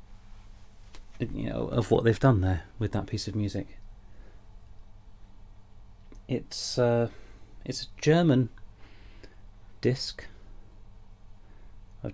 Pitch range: 95-110 Hz